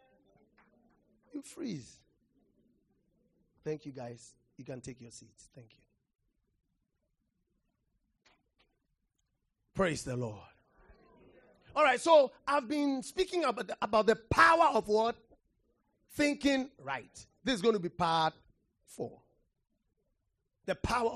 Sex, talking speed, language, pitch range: male, 105 wpm, English, 190-285 Hz